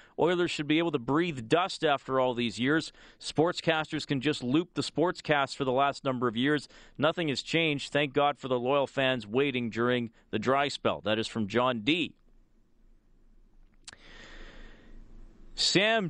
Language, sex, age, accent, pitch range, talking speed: English, male, 40-59, American, 120-155 Hz, 165 wpm